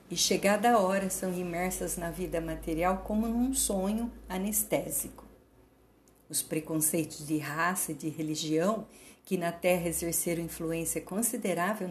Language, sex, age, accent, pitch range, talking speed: Portuguese, female, 50-69, Brazilian, 160-200 Hz, 130 wpm